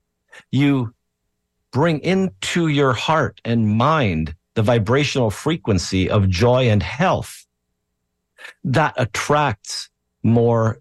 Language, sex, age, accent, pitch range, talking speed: English, male, 50-69, American, 85-125 Hz, 95 wpm